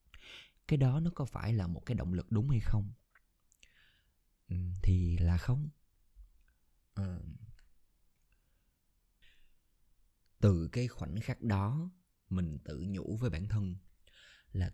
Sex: male